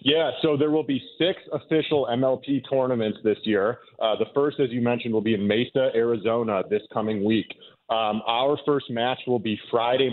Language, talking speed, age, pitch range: English, 190 wpm, 30-49, 110-130 Hz